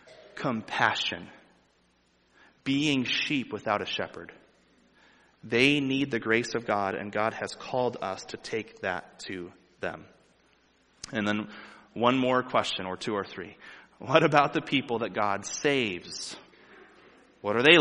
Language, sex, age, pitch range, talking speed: English, male, 30-49, 105-125 Hz, 140 wpm